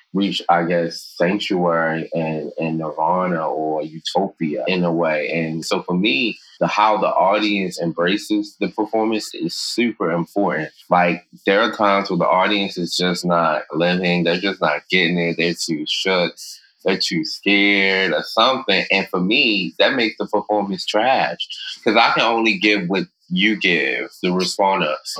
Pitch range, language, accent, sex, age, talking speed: 85-95 Hz, Czech, American, male, 20-39, 160 wpm